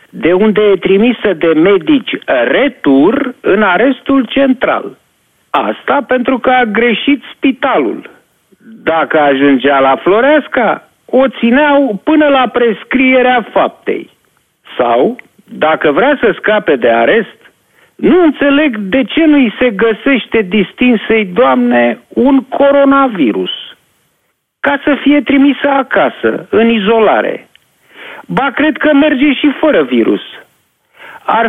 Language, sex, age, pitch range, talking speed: Romanian, male, 50-69, 210-280 Hz, 115 wpm